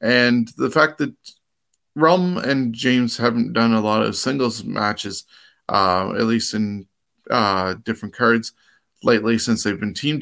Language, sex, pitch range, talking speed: English, male, 105-120 Hz, 155 wpm